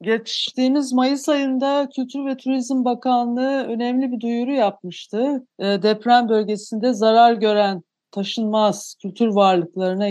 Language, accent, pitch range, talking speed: Turkish, native, 200-245 Hz, 115 wpm